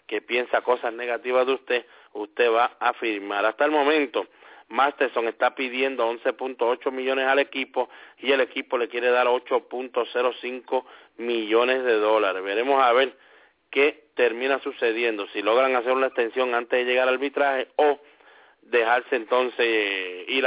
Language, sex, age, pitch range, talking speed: English, male, 40-59, 115-140 Hz, 145 wpm